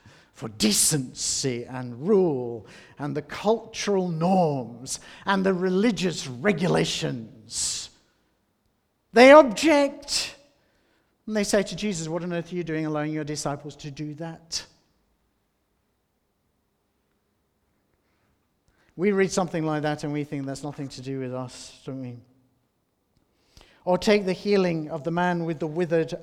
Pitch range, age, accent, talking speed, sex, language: 145-195 Hz, 50-69, British, 130 wpm, male, English